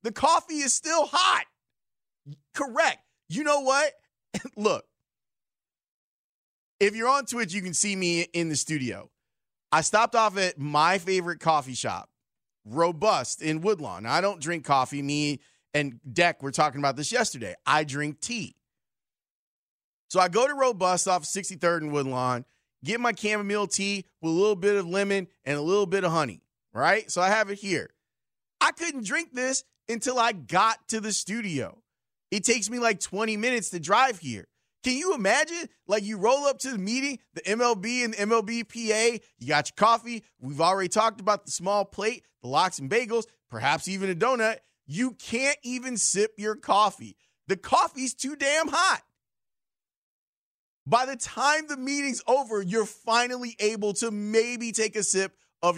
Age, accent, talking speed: 30-49, American, 170 wpm